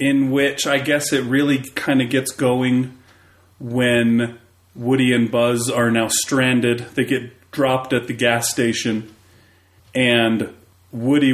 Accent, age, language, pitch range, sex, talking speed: American, 40-59, English, 115-135 Hz, male, 140 wpm